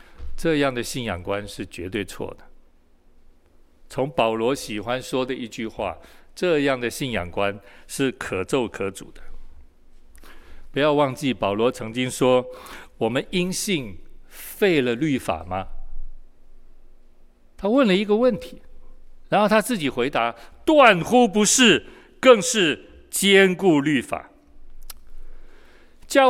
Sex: male